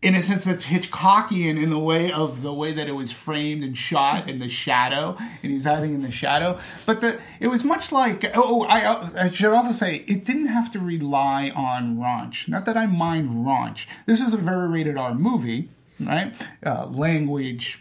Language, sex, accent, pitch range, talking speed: English, male, American, 140-185 Hz, 200 wpm